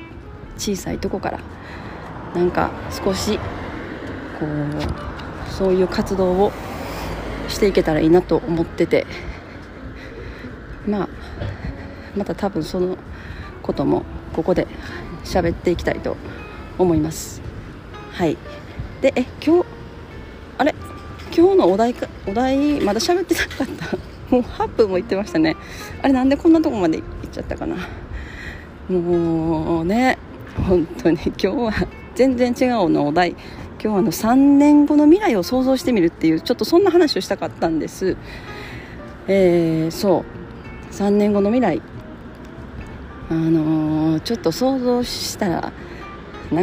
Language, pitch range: Japanese, 160-240 Hz